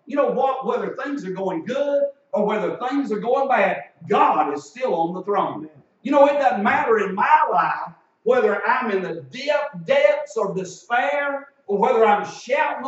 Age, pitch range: 60-79, 215-280 Hz